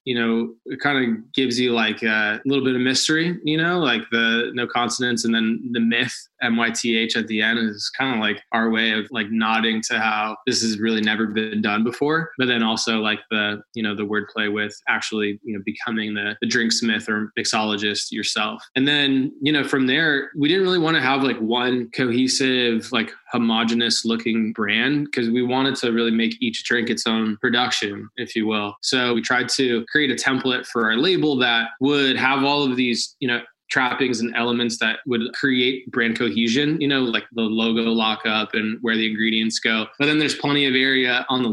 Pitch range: 110-125 Hz